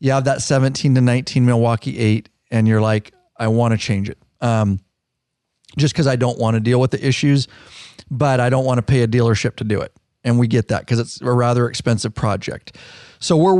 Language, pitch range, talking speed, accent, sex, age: English, 110-130 Hz, 220 wpm, American, male, 40-59